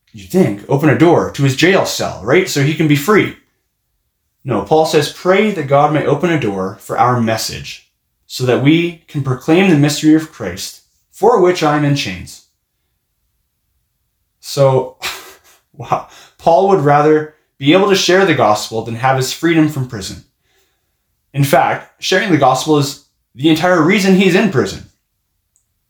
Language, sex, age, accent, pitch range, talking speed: English, male, 20-39, American, 115-155 Hz, 165 wpm